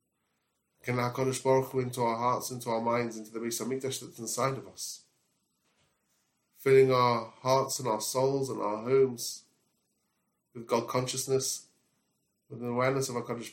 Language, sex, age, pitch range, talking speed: English, male, 20-39, 115-130 Hz, 160 wpm